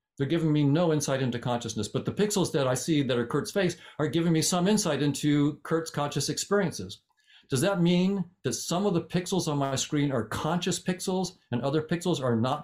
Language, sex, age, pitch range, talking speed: English, male, 50-69, 125-160 Hz, 215 wpm